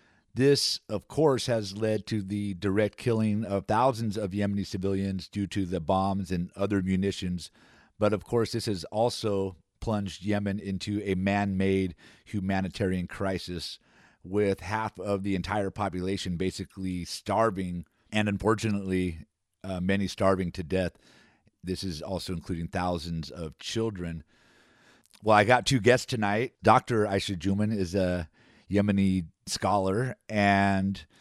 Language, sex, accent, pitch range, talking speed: English, male, American, 95-110 Hz, 135 wpm